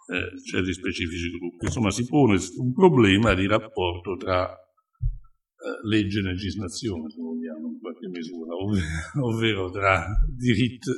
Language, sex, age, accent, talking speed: Italian, male, 60-79, native, 140 wpm